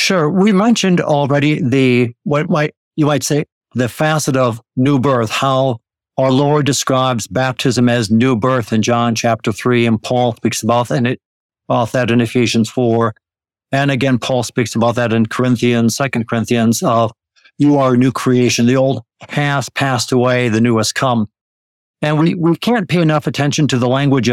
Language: English